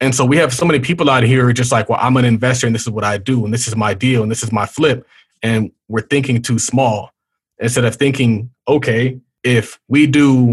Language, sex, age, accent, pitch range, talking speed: English, male, 20-39, American, 115-140 Hz, 255 wpm